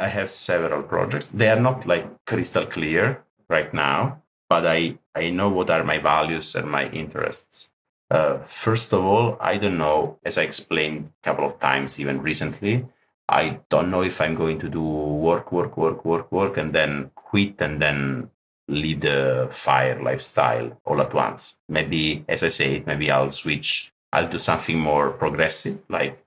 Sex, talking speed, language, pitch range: male, 175 wpm, English, 70-85 Hz